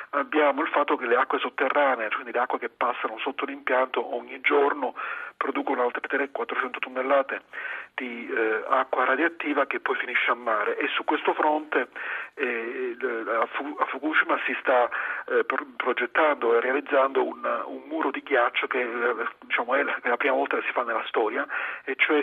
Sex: male